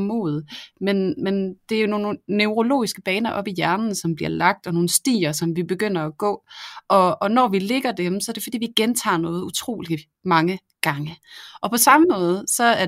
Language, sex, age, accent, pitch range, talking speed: Danish, female, 30-49, native, 180-220 Hz, 210 wpm